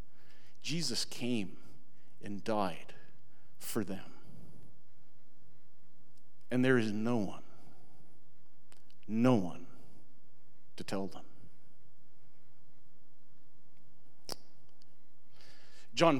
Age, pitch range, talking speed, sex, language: 50-69, 115-150 Hz, 65 wpm, male, English